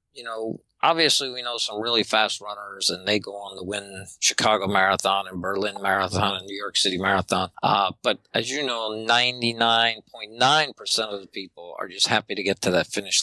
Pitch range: 100-120 Hz